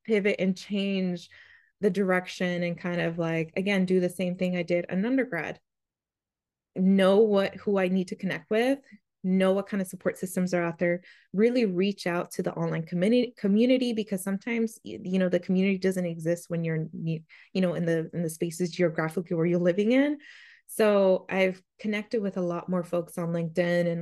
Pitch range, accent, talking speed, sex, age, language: 170-200 Hz, American, 190 wpm, female, 20-39, English